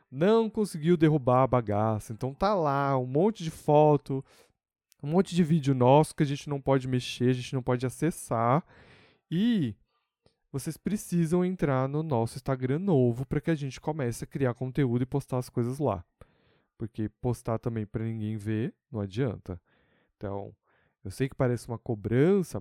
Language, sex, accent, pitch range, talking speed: Portuguese, male, Brazilian, 125-195 Hz, 170 wpm